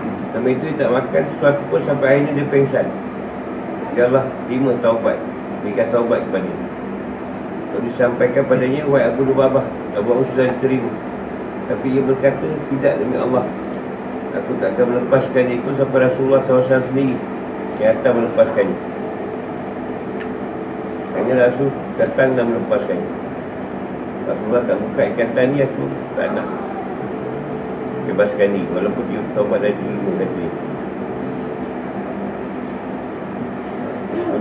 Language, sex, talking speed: Malay, male, 115 wpm